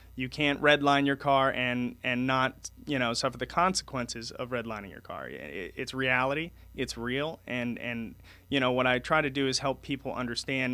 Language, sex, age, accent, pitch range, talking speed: English, male, 30-49, American, 120-140 Hz, 190 wpm